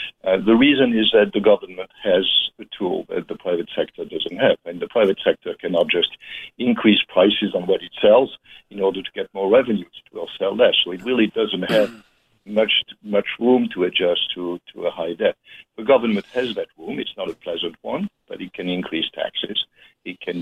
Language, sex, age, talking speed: English, male, 60-79, 205 wpm